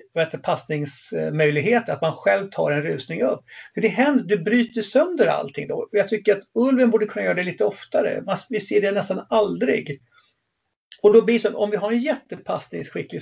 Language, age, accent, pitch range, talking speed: English, 50-69, Swedish, 155-235 Hz, 195 wpm